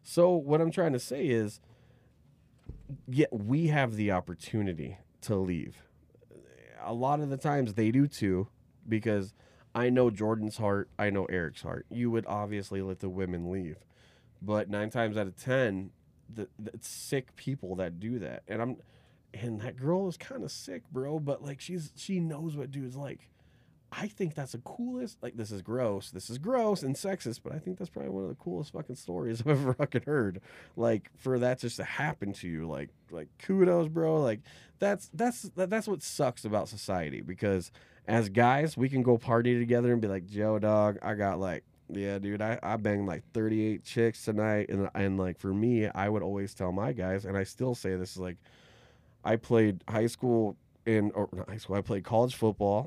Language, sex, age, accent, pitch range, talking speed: English, male, 30-49, American, 100-135 Hz, 195 wpm